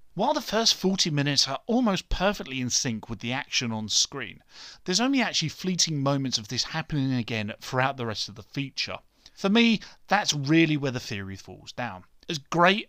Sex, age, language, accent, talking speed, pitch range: male, 30-49, English, British, 190 wpm, 115-170 Hz